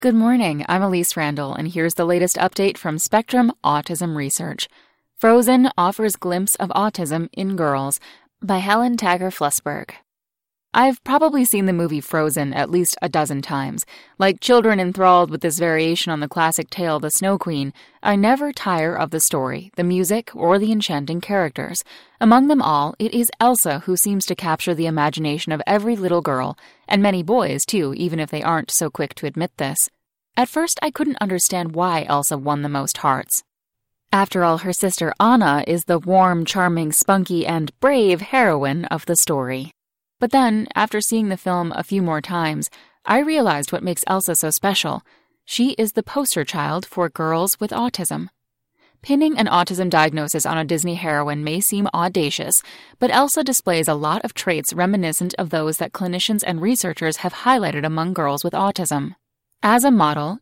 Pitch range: 160-215 Hz